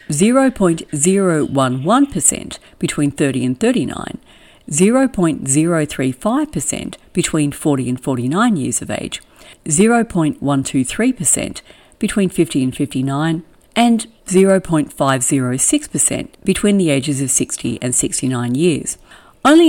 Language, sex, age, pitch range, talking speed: English, female, 50-69, 135-195 Hz, 85 wpm